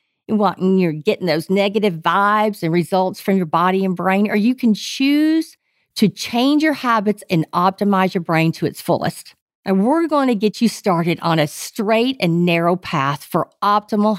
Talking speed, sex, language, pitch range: 180 wpm, female, English, 180-240 Hz